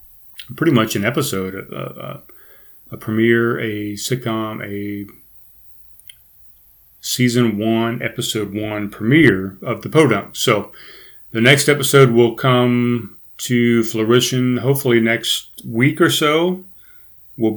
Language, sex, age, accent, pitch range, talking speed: English, male, 40-59, American, 110-145 Hz, 110 wpm